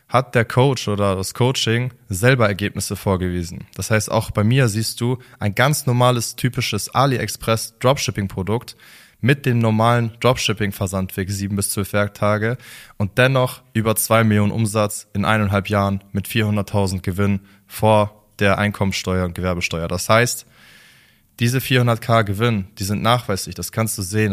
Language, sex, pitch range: German, male, 100-120 Hz